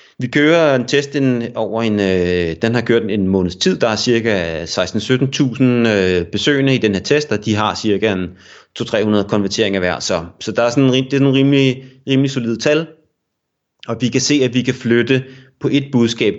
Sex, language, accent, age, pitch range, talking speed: male, Danish, native, 30-49, 95-130 Hz, 190 wpm